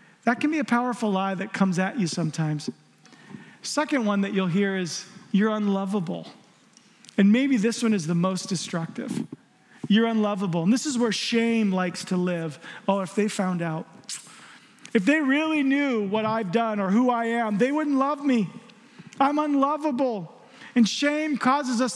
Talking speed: 170 wpm